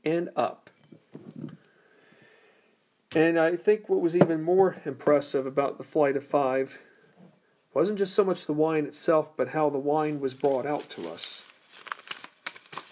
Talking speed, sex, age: 145 wpm, male, 40-59